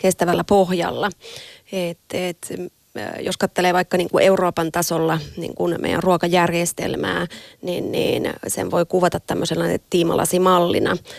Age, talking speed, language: 30-49, 105 wpm, Finnish